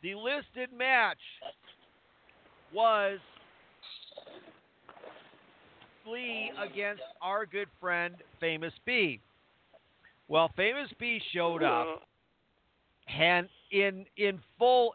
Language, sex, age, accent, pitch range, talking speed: English, male, 50-69, American, 165-220 Hz, 80 wpm